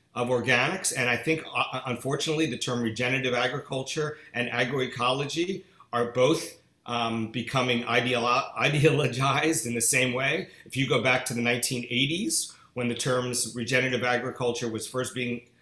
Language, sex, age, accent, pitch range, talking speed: English, male, 50-69, American, 120-145 Hz, 145 wpm